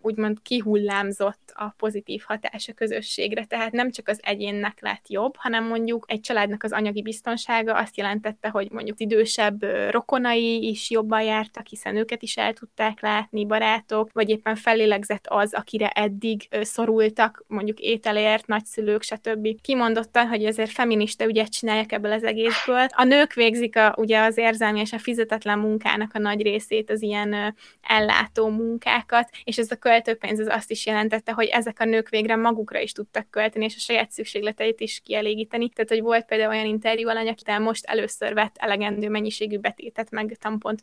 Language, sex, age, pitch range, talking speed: Hungarian, female, 20-39, 215-230 Hz, 175 wpm